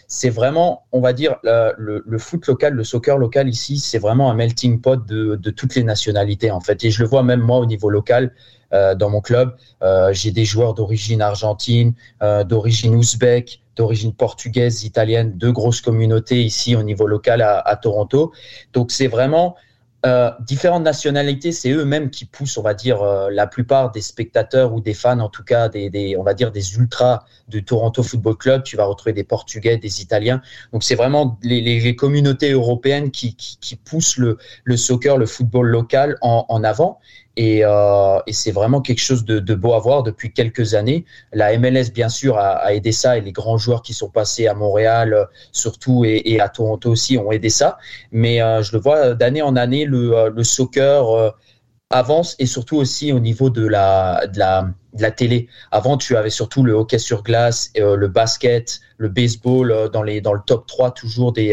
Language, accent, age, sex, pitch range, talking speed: French, French, 30-49, male, 110-130 Hz, 210 wpm